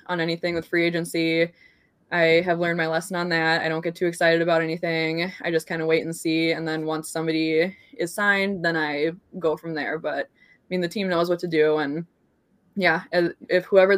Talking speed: 215 wpm